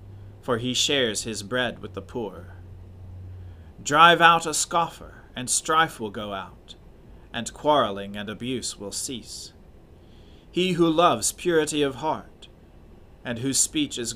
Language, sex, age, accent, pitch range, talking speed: English, male, 40-59, American, 100-140 Hz, 140 wpm